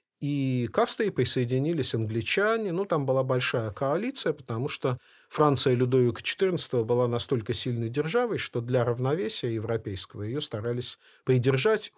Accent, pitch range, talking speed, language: native, 125-180 Hz, 130 wpm, Russian